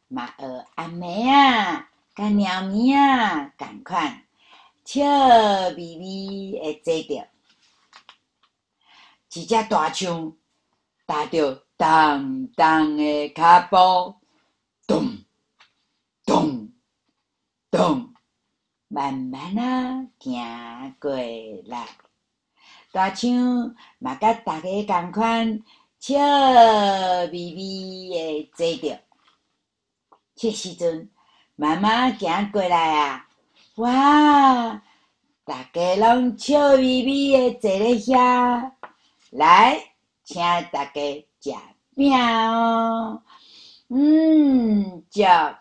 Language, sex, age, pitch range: Chinese, female, 50-69, 170-245 Hz